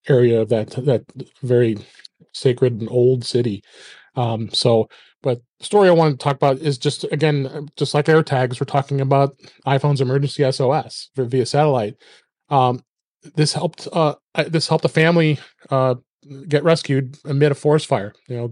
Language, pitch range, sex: English, 120-145 Hz, male